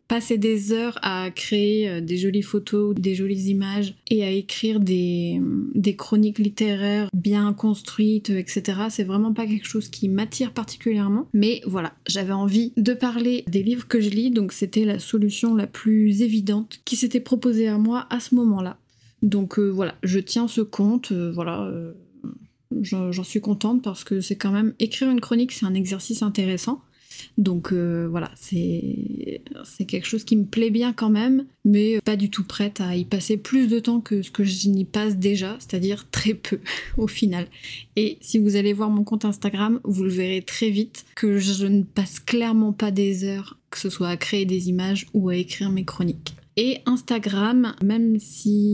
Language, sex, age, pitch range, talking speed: French, female, 20-39, 195-225 Hz, 190 wpm